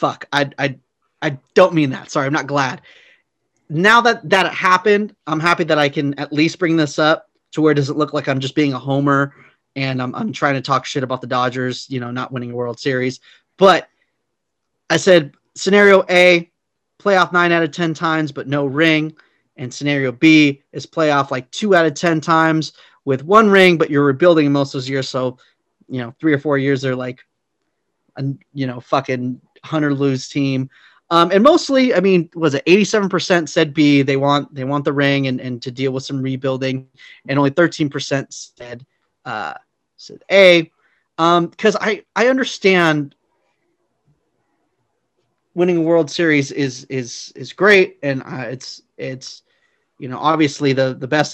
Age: 30-49